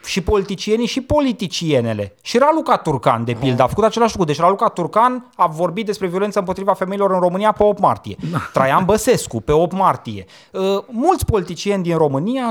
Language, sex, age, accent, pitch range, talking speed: Romanian, male, 30-49, native, 125-195 Hz, 175 wpm